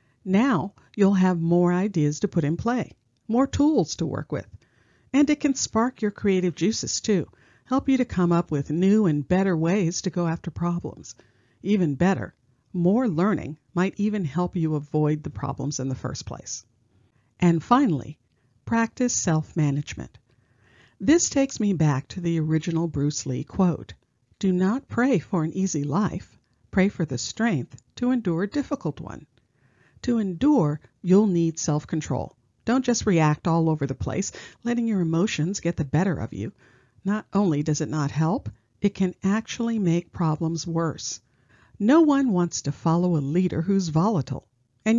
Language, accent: English, American